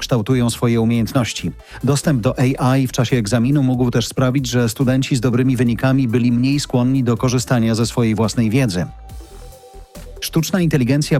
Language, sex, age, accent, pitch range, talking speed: Polish, male, 40-59, native, 115-135 Hz, 150 wpm